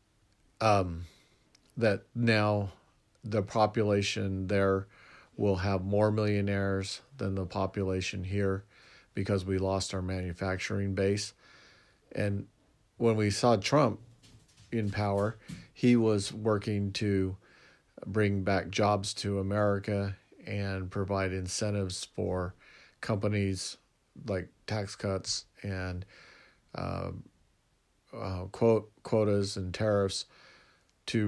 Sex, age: male, 40-59